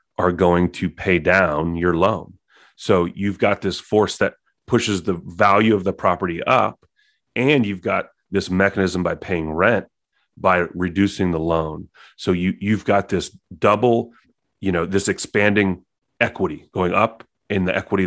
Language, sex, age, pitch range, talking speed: English, male, 30-49, 90-105 Hz, 155 wpm